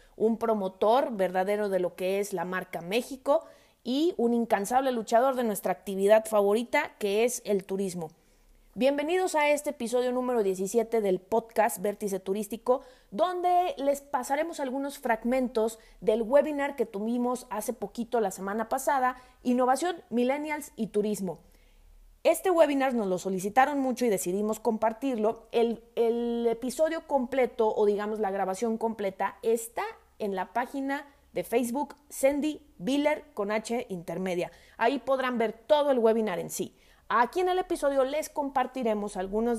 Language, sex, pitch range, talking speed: Spanish, female, 210-270 Hz, 140 wpm